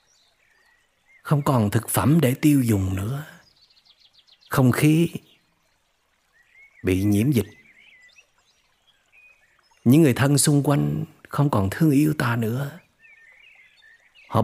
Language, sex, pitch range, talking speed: Vietnamese, male, 110-155 Hz, 105 wpm